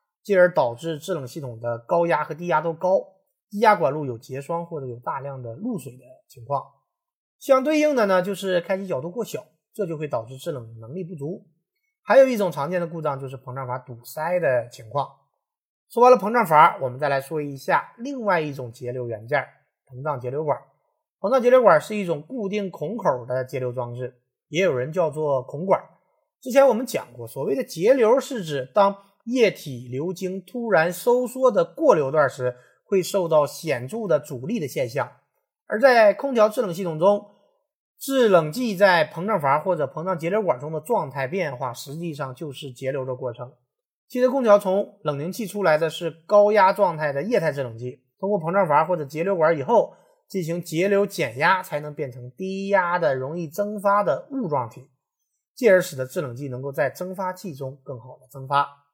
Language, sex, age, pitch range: Chinese, male, 30-49, 135-205 Hz